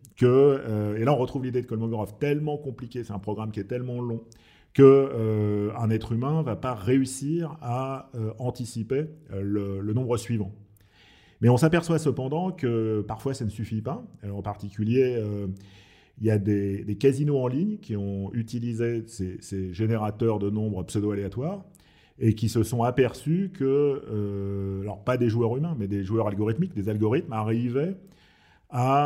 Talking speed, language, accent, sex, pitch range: 180 wpm, French, French, male, 105-130 Hz